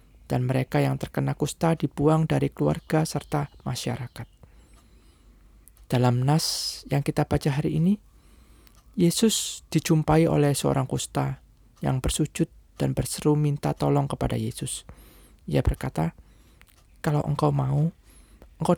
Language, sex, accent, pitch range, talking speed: Indonesian, male, native, 105-165 Hz, 115 wpm